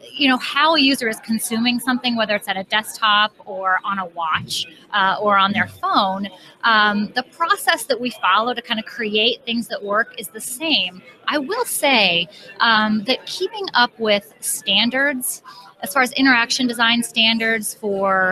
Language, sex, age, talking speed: English, female, 30-49, 175 wpm